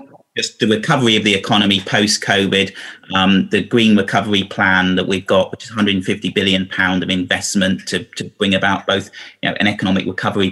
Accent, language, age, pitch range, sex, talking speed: British, English, 30-49, 95-110 Hz, male, 160 wpm